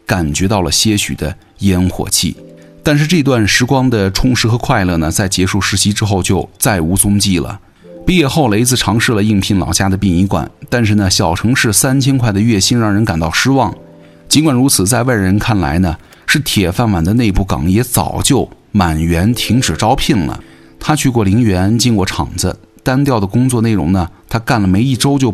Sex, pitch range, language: male, 90-120 Hz, Chinese